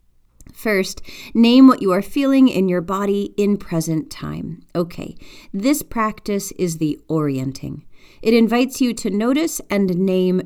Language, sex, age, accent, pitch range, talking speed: English, female, 40-59, American, 165-225 Hz, 145 wpm